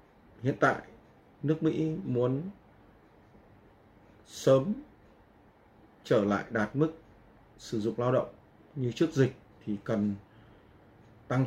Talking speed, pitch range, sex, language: 105 wpm, 105-130 Hz, male, Vietnamese